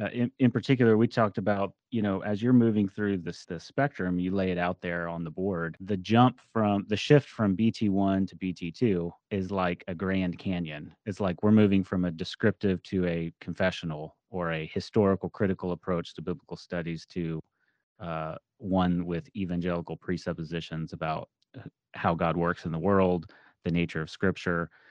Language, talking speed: English, 175 wpm